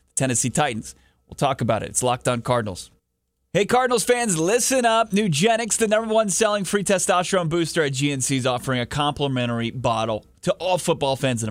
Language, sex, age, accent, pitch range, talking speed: English, male, 30-49, American, 135-190 Hz, 180 wpm